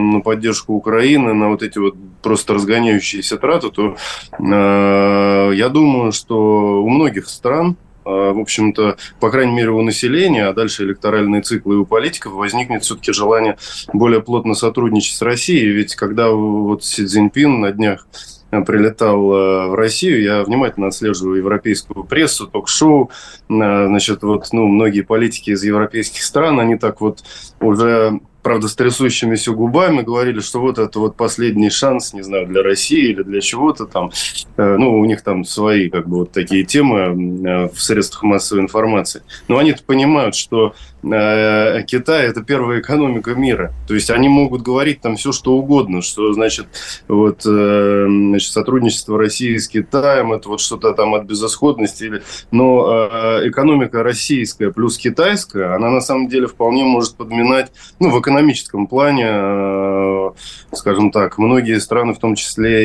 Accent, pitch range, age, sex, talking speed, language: native, 100-120 Hz, 20-39, male, 155 wpm, Russian